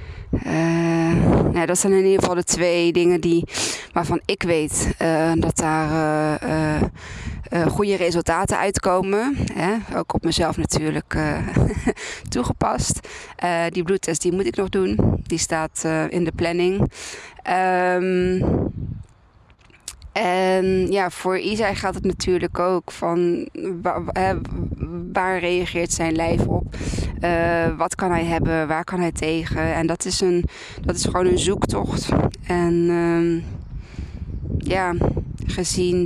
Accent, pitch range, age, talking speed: Dutch, 160-185 Hz, 20-39, 135 wpm